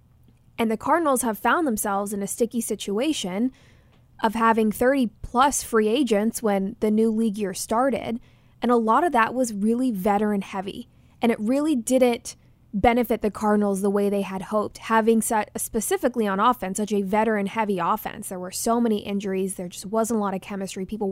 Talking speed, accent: 175 wpm, American